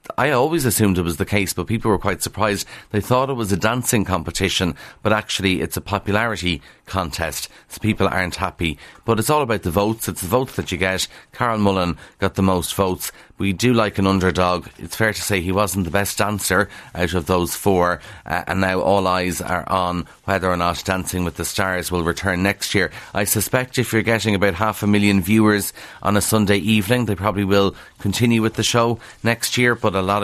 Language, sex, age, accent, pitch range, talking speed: English, male, 30-49, Irish, 90-115 Hz, 215 wpm